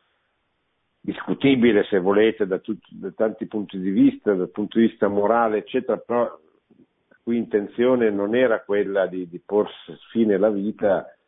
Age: 50-69